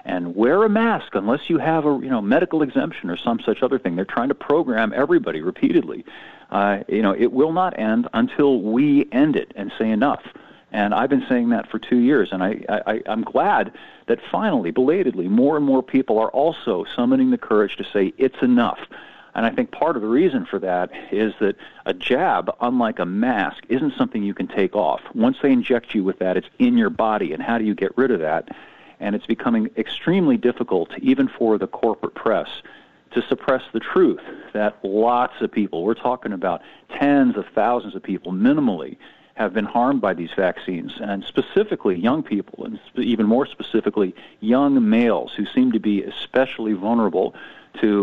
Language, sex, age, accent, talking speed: English, male, 50-69, American, 200 wpm